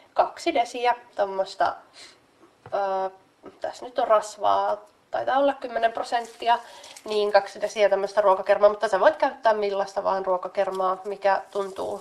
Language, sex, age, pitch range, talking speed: Finnish, female, 20-39, 195-235 Hz, 125 wpm